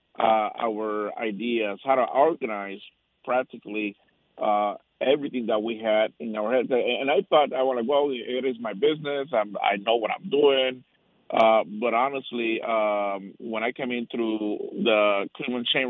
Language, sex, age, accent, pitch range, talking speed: English, male, 50-69, American, 105-125 Hz, 165 wpm